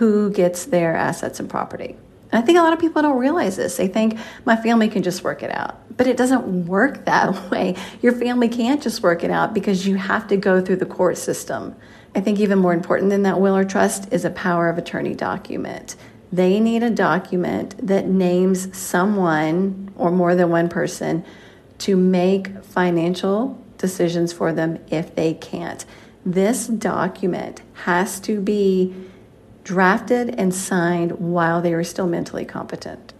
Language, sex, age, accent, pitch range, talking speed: English, female, 40-59, American, 180-220 Hz, 175 wpm